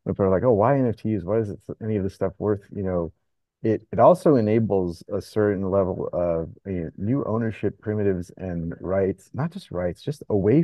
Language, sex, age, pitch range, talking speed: English, male, 30-49, 90-110 Hz, 210 wpm